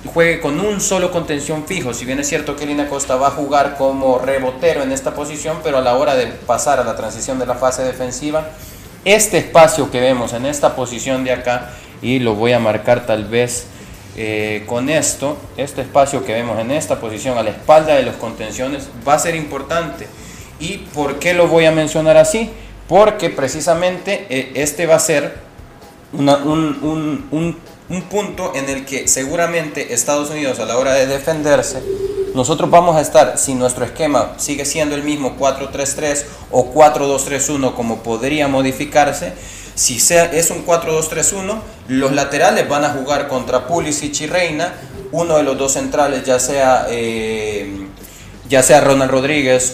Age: 30-49